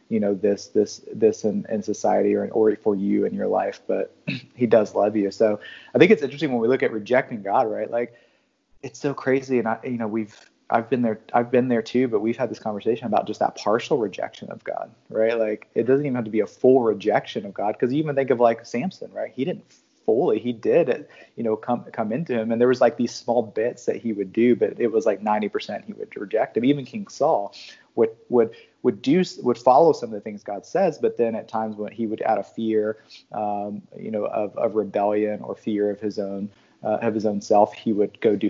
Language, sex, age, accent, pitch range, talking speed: English, male, 30-49, American, 105-125 Hz, 245 wpm